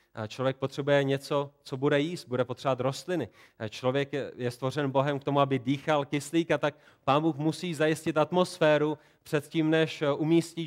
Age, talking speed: 30-49, 165 wpm